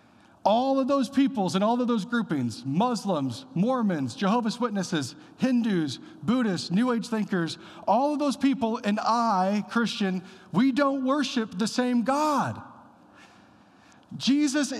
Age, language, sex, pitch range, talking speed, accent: 40-59, English, male, 205-260 Hz, 130 wpm, American